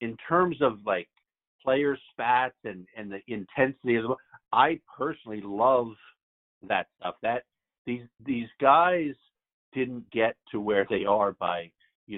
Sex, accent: male, American